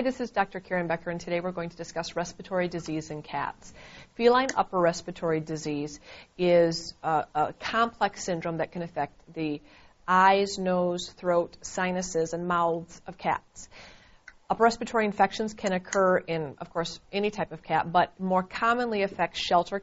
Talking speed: 165 wpm